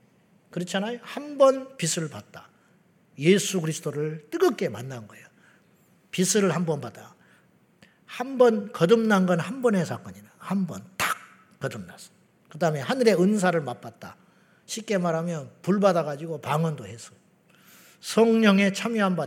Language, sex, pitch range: Korean, male, 160-210 Hz